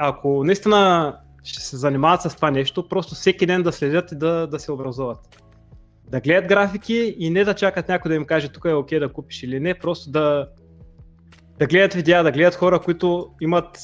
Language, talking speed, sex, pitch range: Bulgarian, 205 wpm, male, 145-170 Hz